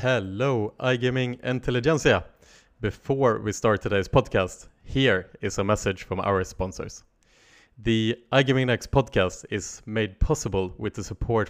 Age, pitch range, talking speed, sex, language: 20-39, 95-115 Hz, 130 wpm, male, English